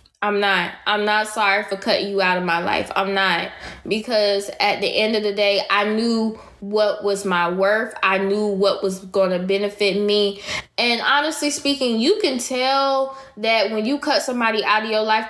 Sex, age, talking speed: female, 10-29, 190 wpm